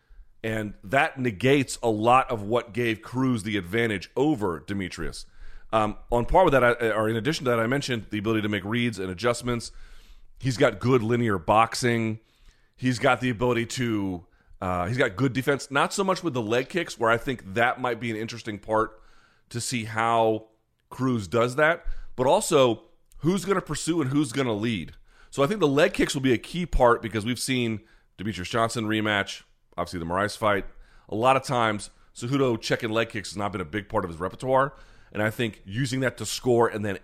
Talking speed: 205 wpm